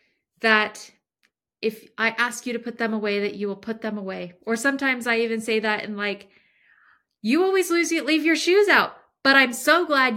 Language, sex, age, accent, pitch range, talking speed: English, female, 20-39, American, 190-240 Hz, 205 wpm